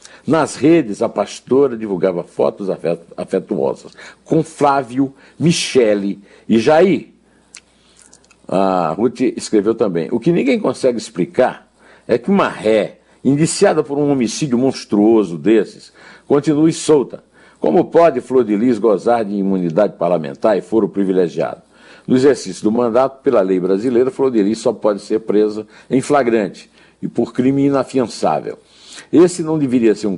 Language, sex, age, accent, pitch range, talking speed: Portuguese, male, 60-79, Brazilian, 105-155 Hz, 145 wpm